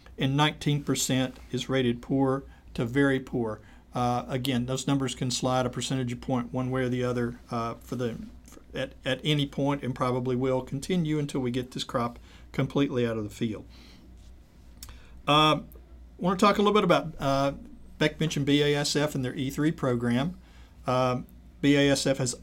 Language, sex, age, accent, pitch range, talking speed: English, male, 50-69, American, 120-145 Hz, 170 wpm